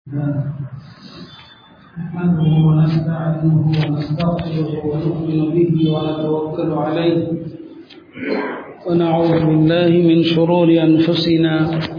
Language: Tamil